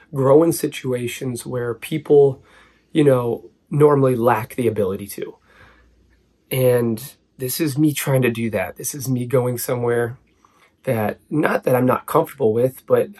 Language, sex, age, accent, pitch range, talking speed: English, male, 30-49, American, 115-135 Hz, 150 wpm